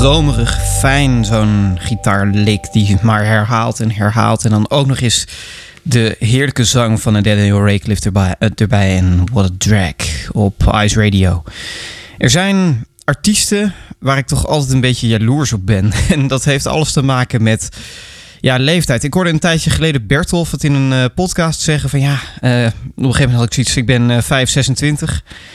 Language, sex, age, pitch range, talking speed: Dutch, male, 20-39, 110-140 Hz, 180 wpm